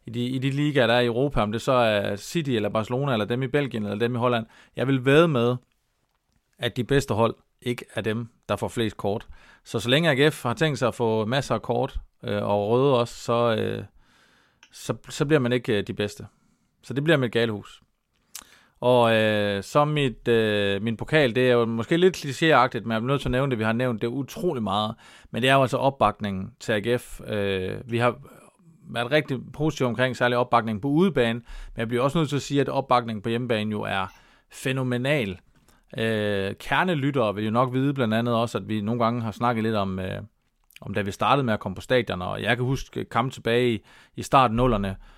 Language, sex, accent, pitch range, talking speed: Danish, male, native, 110-130 Hz, 220 wpm